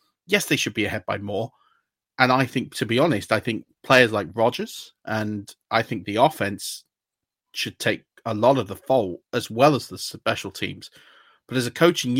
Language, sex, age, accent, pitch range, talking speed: English, male, 30-49, British, 115-145 Hz, 195 wpm